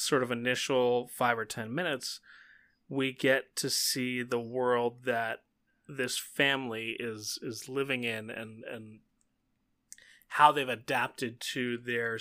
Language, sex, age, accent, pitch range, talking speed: English, male, 20-39, American, 120-135 Hz, 135 wpm